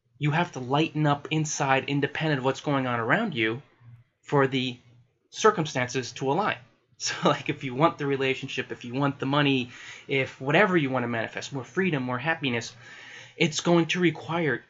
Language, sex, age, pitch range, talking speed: English, male, 20-39, 125-150 Hz, 180 wpm